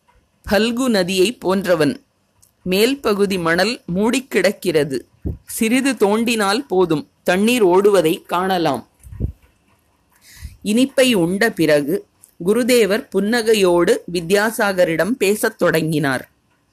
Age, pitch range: 30-49, 170-225 Hz